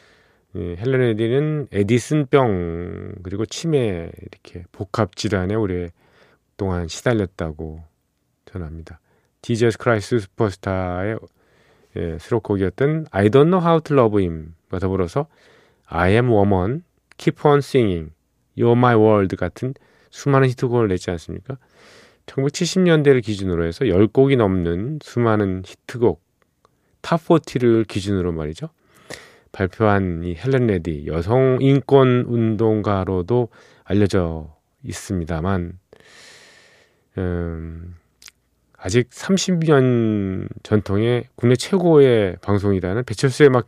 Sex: male